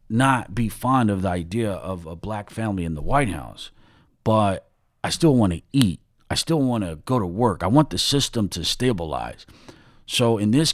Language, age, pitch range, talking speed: English, 40-59, 85-110 Hz, 200 wpm